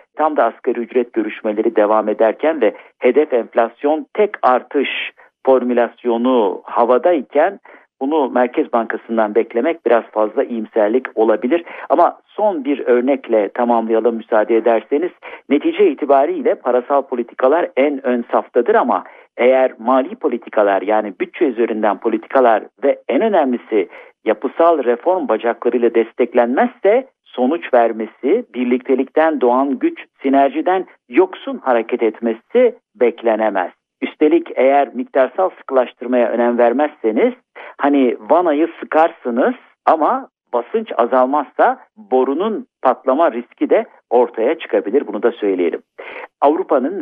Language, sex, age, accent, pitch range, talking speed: Turkish, male, 50-69, native, 115-170 Hz, 105 wpm